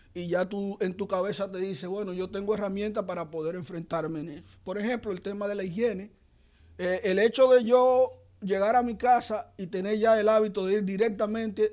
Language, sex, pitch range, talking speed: Spanish, male, 175-215 Hz, 210 wpm